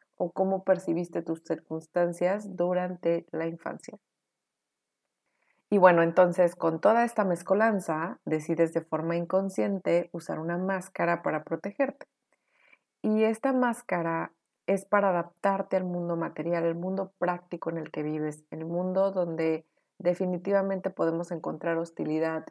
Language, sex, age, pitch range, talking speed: Spanish, female, 30-49, 165-190 Hz, 130 wpm